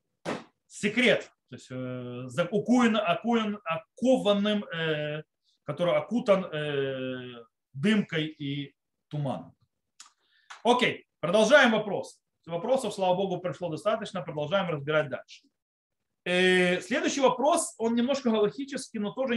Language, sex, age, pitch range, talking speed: Russian, male, 30-49, 160-240 Hz, 100 wpm